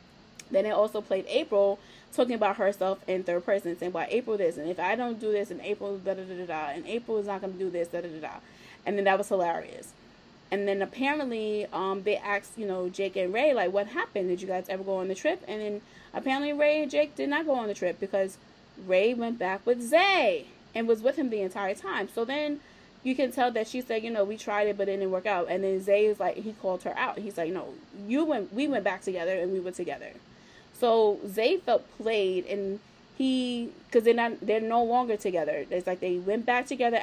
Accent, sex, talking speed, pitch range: American, female, 240 wpm, 190-230 Hz